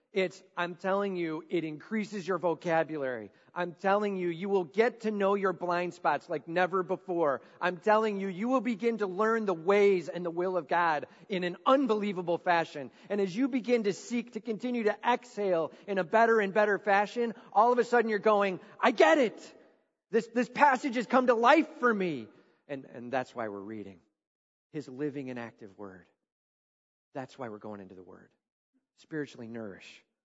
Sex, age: male, 40-59